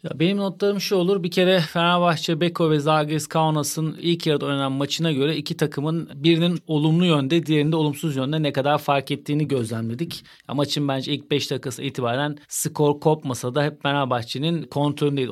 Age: 40-59